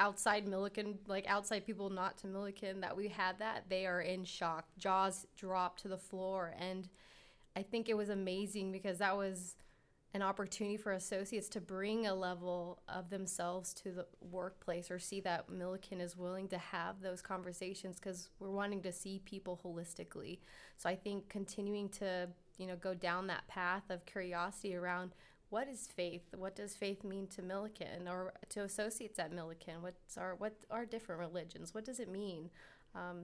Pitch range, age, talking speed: 180-200 Hz, 20-39, 175 wpm